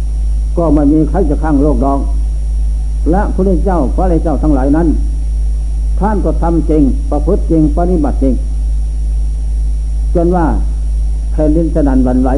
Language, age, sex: Thai, 60-79, male